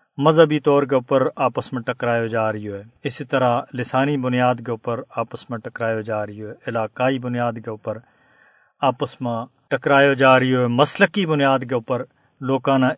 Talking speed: 170 wpm